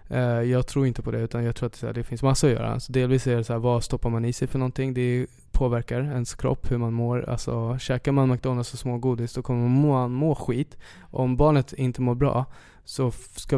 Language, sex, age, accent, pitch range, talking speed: English, male, 20-39, Swedish, 115-130 Hz, 235 wpm